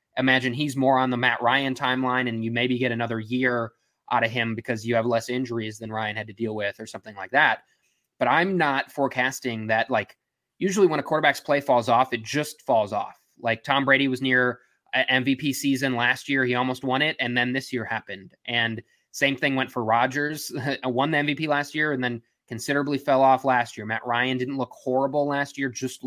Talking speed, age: 215 wpm, 20-39